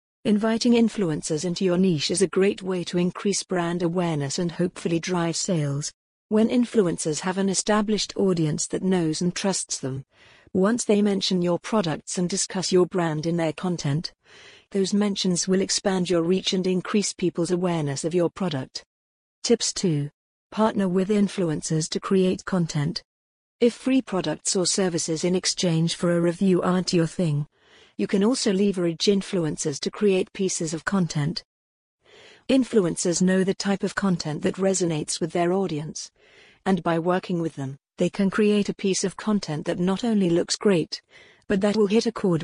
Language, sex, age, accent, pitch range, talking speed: English, female, 50-69, British, 165-200 Hz, 165 wpm